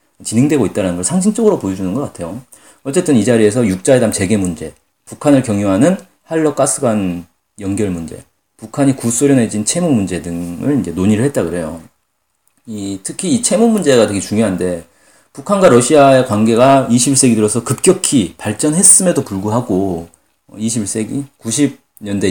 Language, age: Korean, 40-59